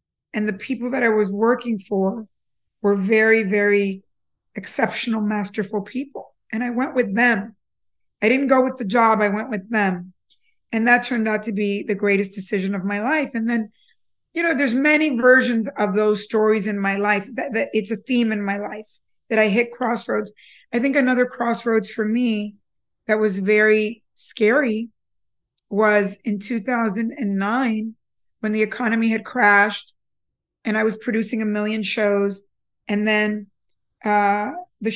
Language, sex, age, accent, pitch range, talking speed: English, female, 50-69, American, 210-235 Hz, 165 wpm